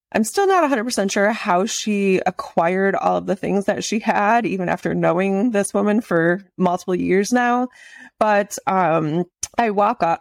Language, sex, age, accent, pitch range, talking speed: English, female, 20-39, American, 180-220 Hz, 170 wpm